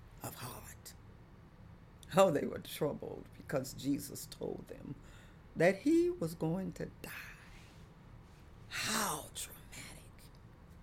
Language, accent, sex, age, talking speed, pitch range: English, American, female, 40-59, 100 wpm, 140-230 Hz